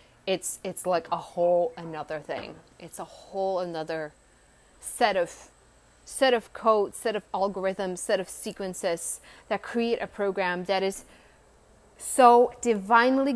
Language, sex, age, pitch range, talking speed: English, female, 30-49, 185-230 Hz, 135 wpm